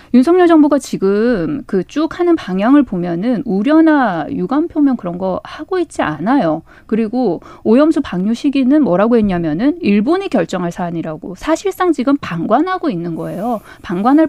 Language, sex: Korean, female